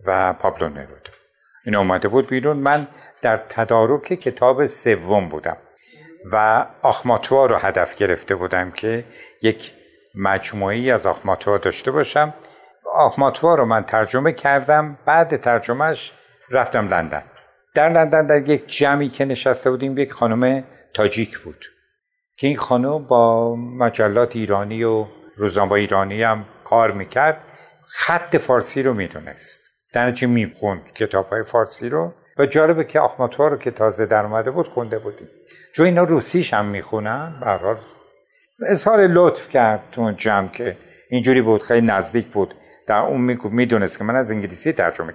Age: 60-79